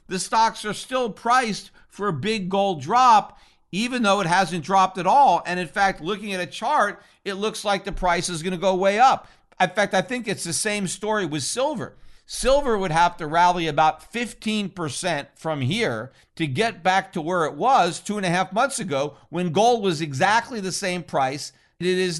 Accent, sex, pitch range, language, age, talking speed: American, male, 170-215 Hz, English, 50-69, 205 wpm